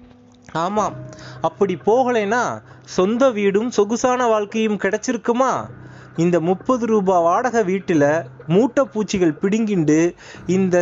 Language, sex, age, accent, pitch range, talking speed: Tamil, male, 30-49, native, 165-235 Hz, 95 wpm